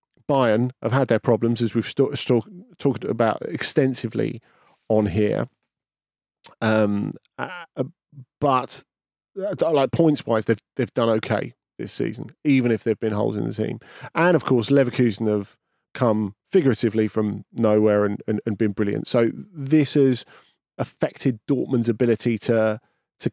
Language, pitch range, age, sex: English, 110-135 Hz, 40-59, male